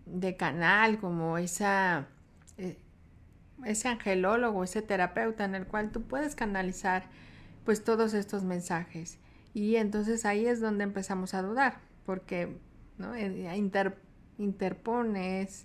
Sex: female